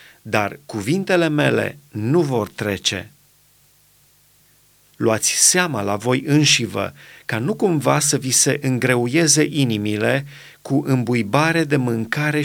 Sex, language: male, Romanian